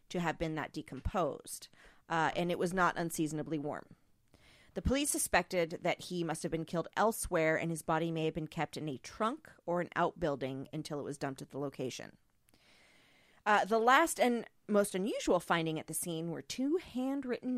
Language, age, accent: English, 40-59, American